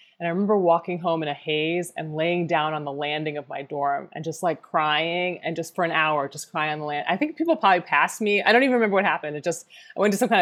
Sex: female